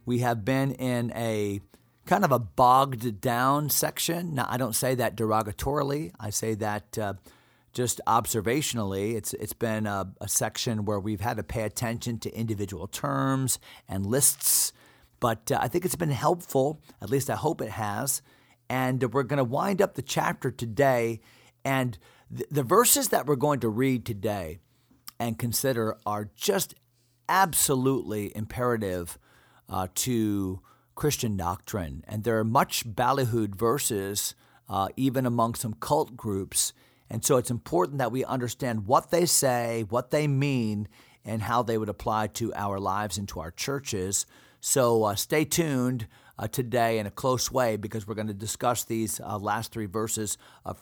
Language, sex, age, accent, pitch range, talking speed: English, male, 40-59, American, 110-135 Hz, 165 wpm